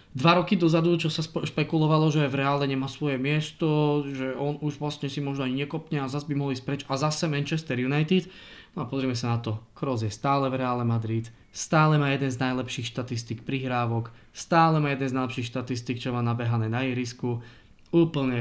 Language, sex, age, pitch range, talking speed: Slovak, male, 20-39, 120-150 Hz, 200 wpm